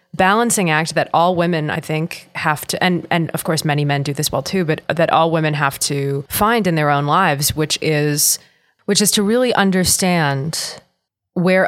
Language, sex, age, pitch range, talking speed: English, female, 20-39, 150-190 Hz, 195 wpm